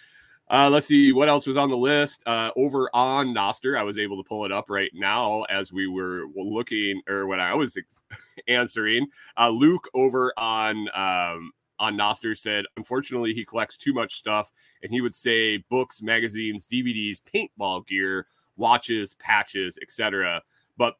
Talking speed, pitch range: 165 wpm, 100-130 Hz